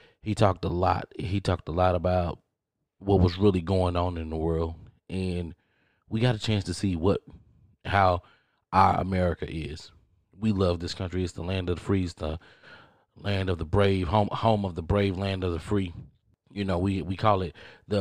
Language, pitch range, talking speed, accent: English, 85-100 Hz, 205 wpm, American